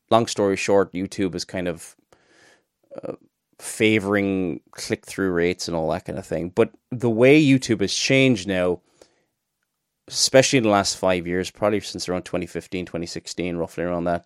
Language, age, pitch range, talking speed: English, 30-49, 100-120 Hz, 160 wpm